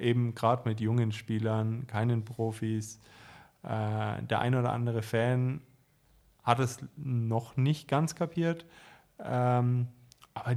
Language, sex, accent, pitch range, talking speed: German, male, German, 110-120 Hz, 110 wpm